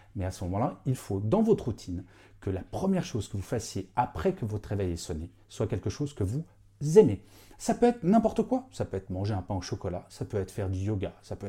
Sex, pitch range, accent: male, 100-150 Hz, French